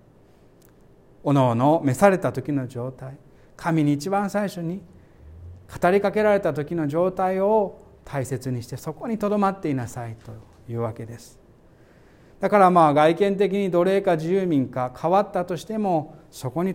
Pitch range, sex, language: 125-180 Hz, male, Japanese